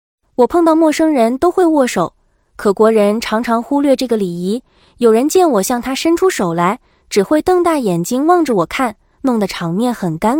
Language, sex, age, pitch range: Chinese, female, 20-39, 205-300 Hz